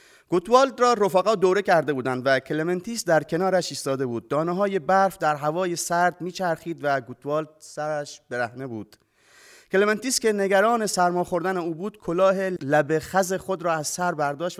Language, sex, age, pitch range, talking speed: Persian, male, 30-49, 135-185 Hz, 160 wpm